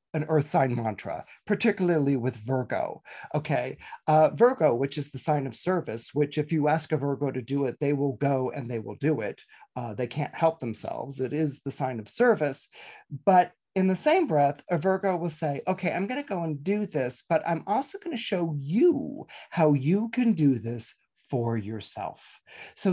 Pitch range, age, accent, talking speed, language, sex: 135-180 Hz, 40-59, American, 200 wpm, English, male